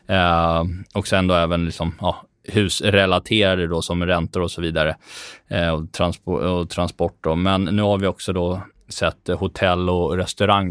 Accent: native